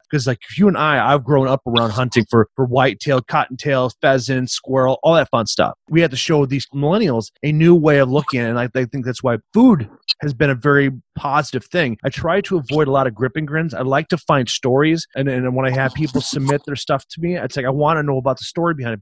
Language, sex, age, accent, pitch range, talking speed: English, male, 30-49, American, 130-155 Hz, 255 wpm